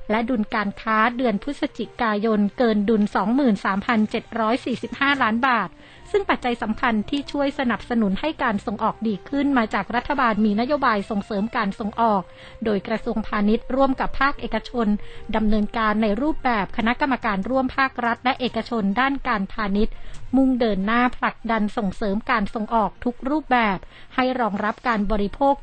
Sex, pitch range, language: female, 215-250 Hz, Thai